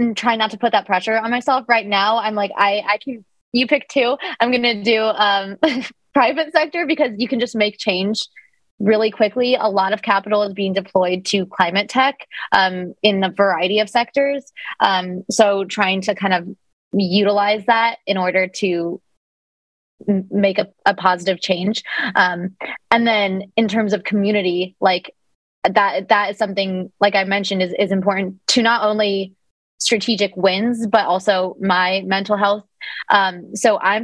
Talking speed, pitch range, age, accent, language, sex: 170 wpm, 190-230 Hz, 20-39, American, English, female